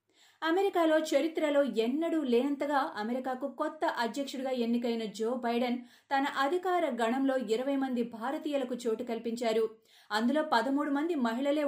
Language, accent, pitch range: Telugu, native, 235-285 Hz